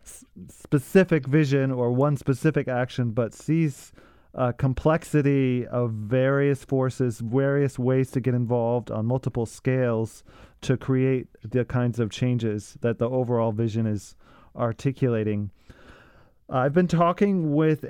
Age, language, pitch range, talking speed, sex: 30-49, English, 125-165 Hz, 125 wpm, male